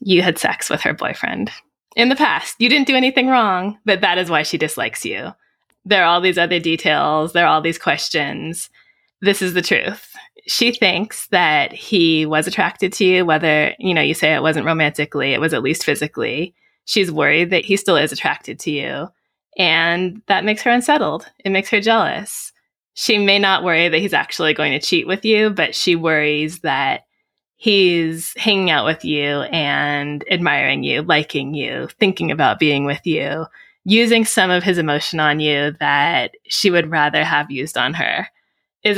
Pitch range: 155-205 Hz